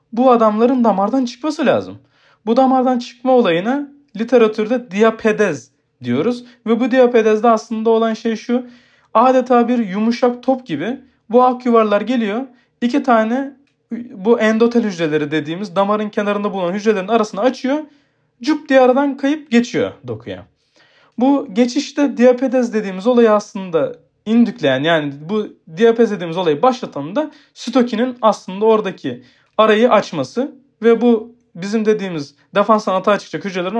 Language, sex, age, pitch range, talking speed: Turkish, male, 40-59, 195-255 Hz, 130 wpm